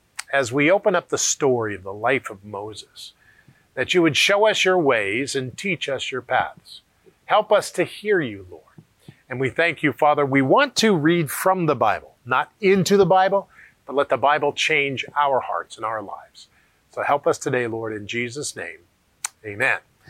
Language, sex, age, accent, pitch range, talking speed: English, male, 50-69, American, 140-190 Hz, 190 wpm